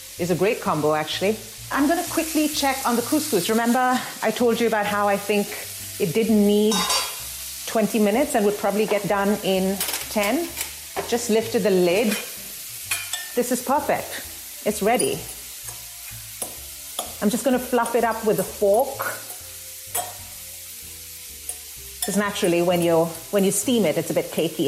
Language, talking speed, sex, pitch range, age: English, 150 wpm, female, 155-235 Hz, 40-59